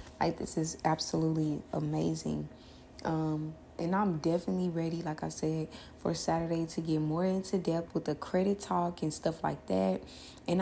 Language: English